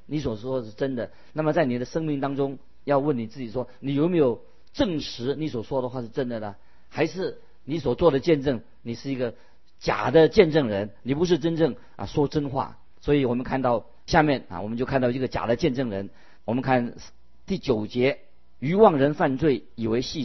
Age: 50-69